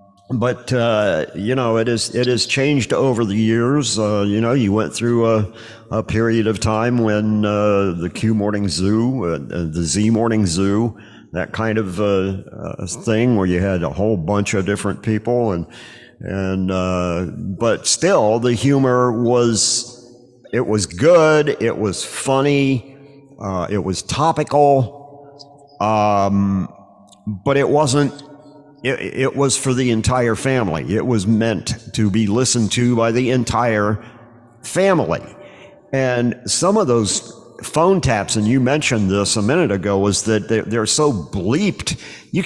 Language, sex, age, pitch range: English, male, 50-69, 105-135 Hz